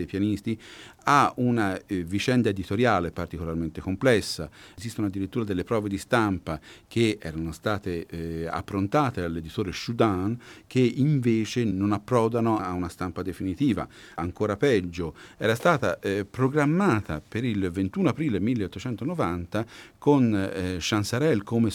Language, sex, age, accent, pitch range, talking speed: Italian, male, 50-69, native, 90-125 Hz, 125 wpm